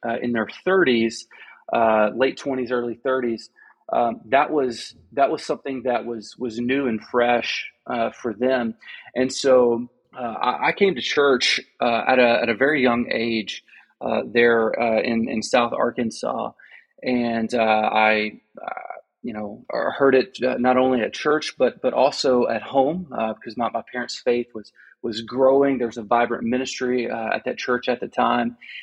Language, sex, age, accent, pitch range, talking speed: English, male, 30-49, American, 115-130 Hz, 175 wpm